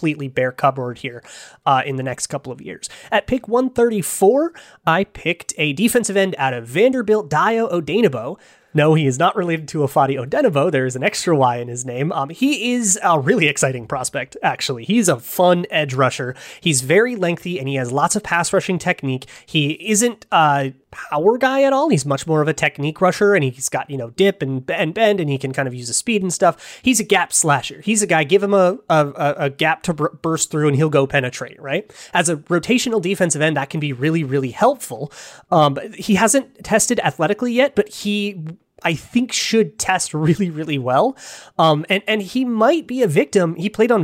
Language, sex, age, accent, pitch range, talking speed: English, male, 30-49, American, 145-205 Hz, 215 wpm